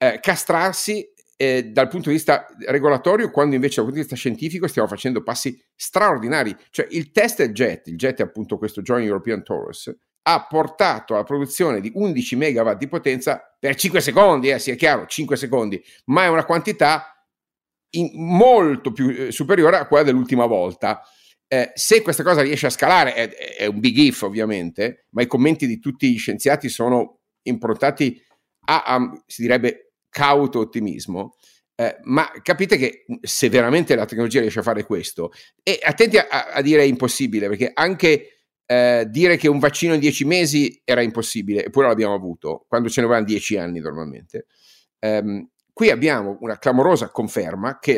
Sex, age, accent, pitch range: male, 50-69, native, 120-170 Hz